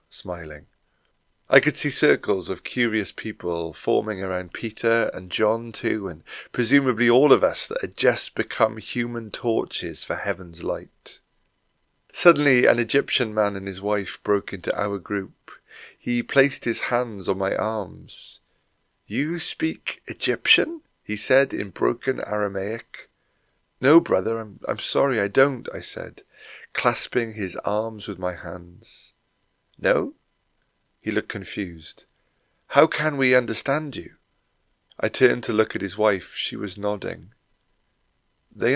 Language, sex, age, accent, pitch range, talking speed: English, male, 30-49, British, 100-130 Hz, 140 wpm